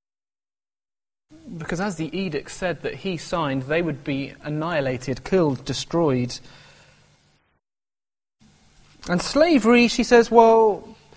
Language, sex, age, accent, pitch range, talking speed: English, male, 20-39, British, 140-200 Hz, 100 wpm